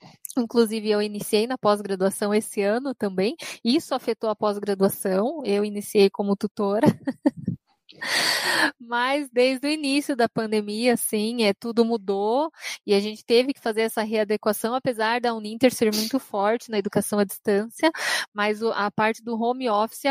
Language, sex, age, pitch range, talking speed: Portuguese, female, 10-29, 215-260 Hz, 145 wpm